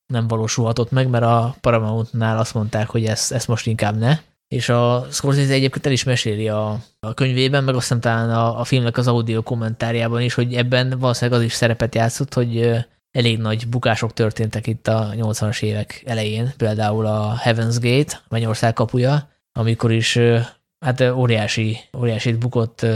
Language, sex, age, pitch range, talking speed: Hungarian, male, 20-39, 115-125 Hz, 165 wpm